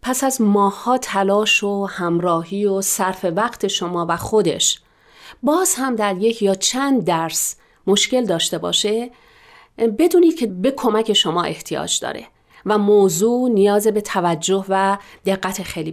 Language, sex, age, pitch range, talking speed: Persian, female, 40-59, 180-225 Hz, 140 wpm